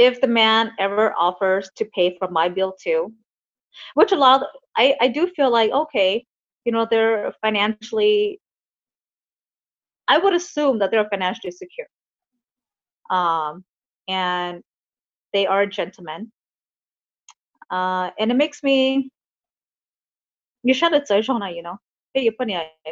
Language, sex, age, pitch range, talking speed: English, female, 30-49, 185-240 Hz, 140 wpm